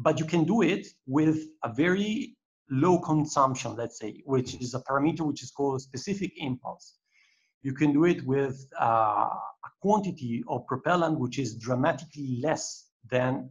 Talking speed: 155 wpm